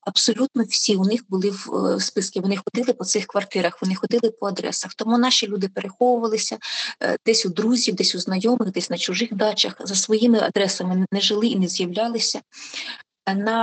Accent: native